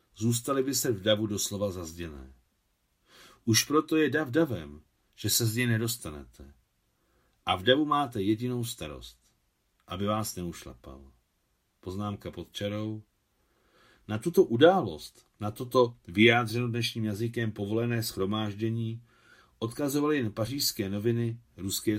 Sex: male